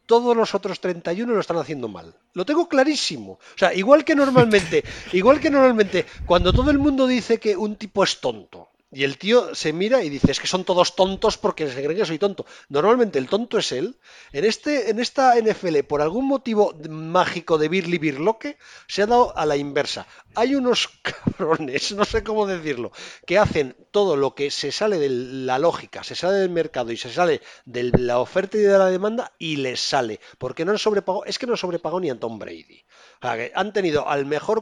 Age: 40-59